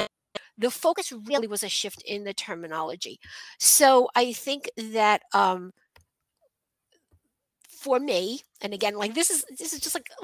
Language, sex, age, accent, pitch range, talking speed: English, female, 50-69, American, 225-315 Hz, 145 wpm